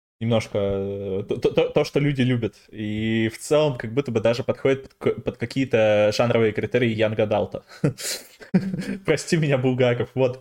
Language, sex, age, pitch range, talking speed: Russian, male, 20-39, 115-140 Hz, 145 wpm